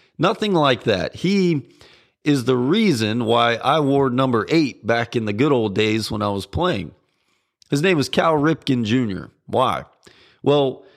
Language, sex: English, male